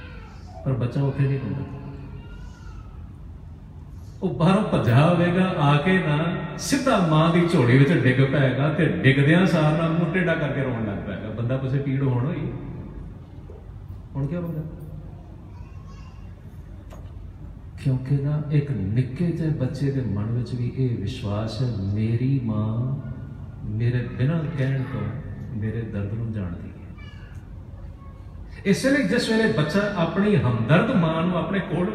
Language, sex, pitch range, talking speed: Punjabi, male, 100-160 Hz, 130 wpm